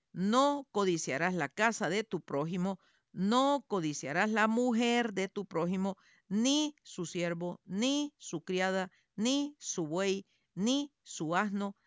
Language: Spanish